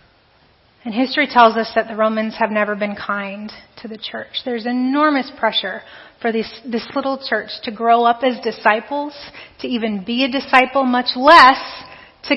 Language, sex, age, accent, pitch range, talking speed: English, female, 30-49, American, 225-280 Hz, 165 wpm